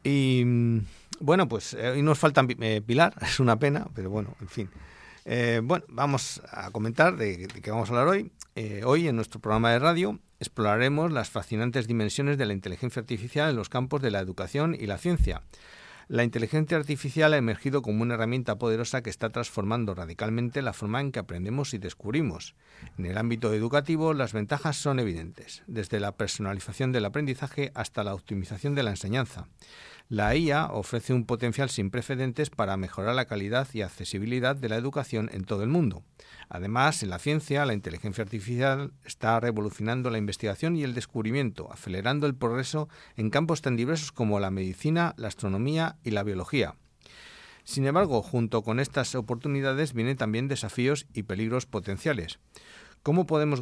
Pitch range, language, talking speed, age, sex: 105-140 Hz, English, 170 wpm, 50-69, male